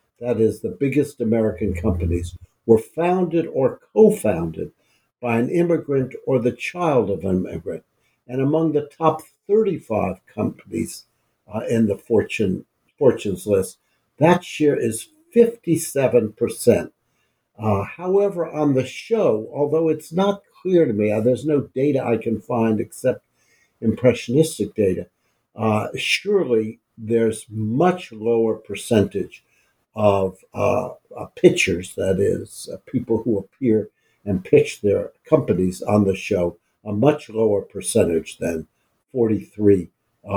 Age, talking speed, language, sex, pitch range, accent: 60-79, 125 wpm, English, male, 110-160 Hz, American